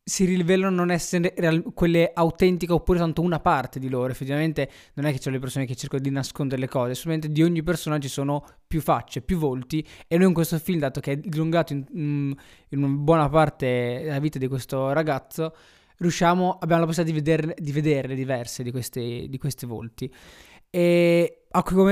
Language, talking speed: Italian, 205 wpm